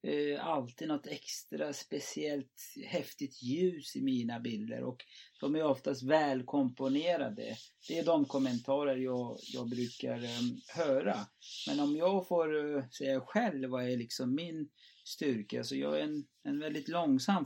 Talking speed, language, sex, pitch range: 150 wpm, English, male, 130-175 Hz